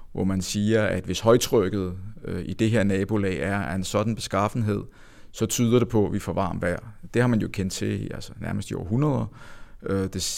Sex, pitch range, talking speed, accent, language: male, 100-120 Hz, 200 wpm, native, Danish